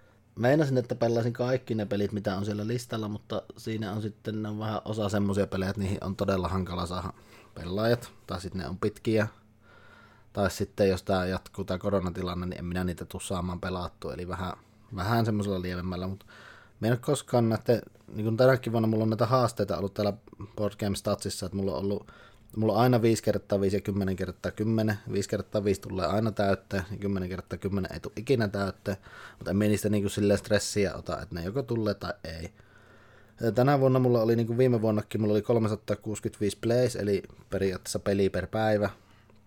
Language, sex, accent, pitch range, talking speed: English, male, Finnish, 95-110 Hz, 185 wpm